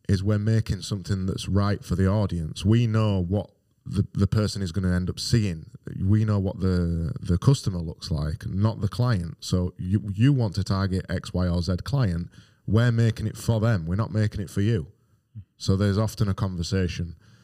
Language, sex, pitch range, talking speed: English, male, 90-110 Hz, 200 wpm